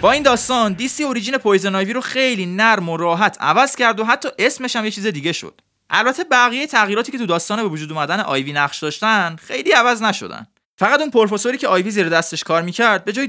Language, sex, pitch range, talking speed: Persian, male, 180-245 Hz, 220 wpm